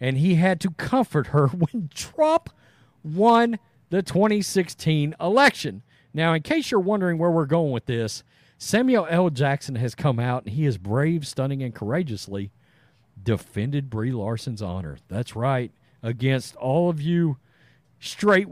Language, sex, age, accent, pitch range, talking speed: English, male, 40-59, American, 120-180 Hz, 150 wpm